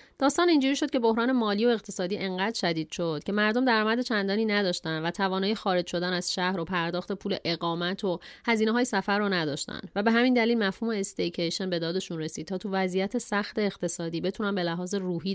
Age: 30-49